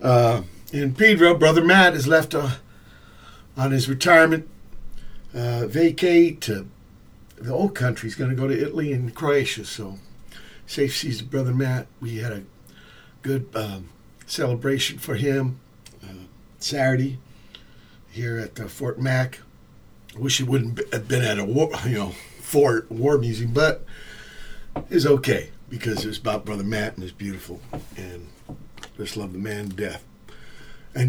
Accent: American